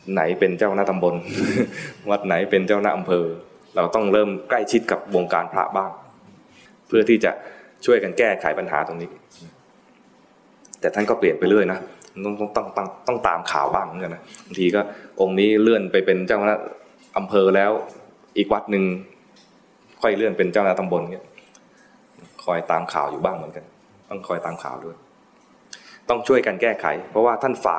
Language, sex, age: English, male, 20-39